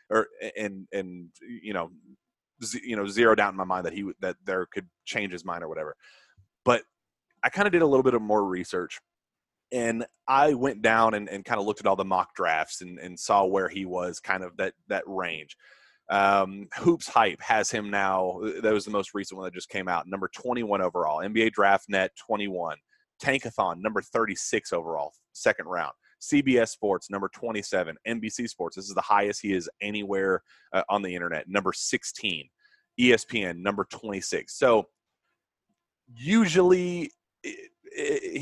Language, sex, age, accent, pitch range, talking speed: English, male, 30-49, American, 95-145 Hz, 185 wpm